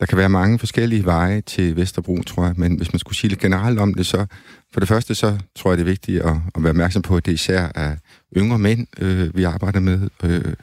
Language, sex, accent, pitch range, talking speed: Danish, male, native, 85-95 Hz, 255 wpm